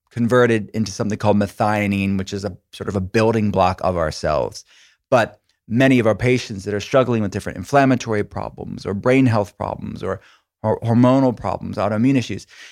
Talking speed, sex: 175 wpm, male